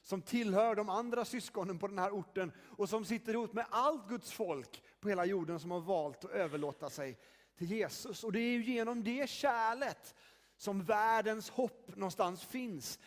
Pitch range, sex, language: 175-235 Hz, male, Swedish